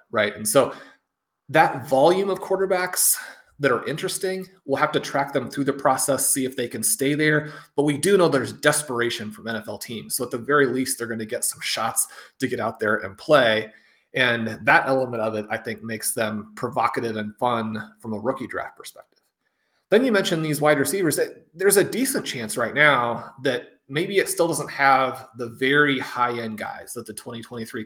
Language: English